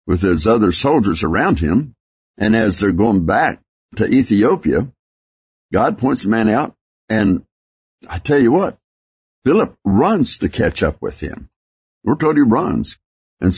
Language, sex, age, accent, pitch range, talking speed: English, male, 60-79, American, 70-105 Hz, 155 wpm